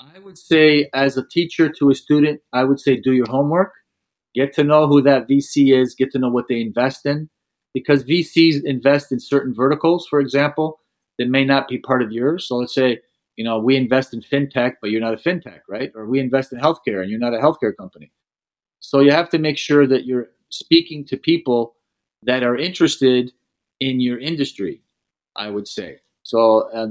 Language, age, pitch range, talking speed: English, 40-59, 125-150 Hz, 205 wpm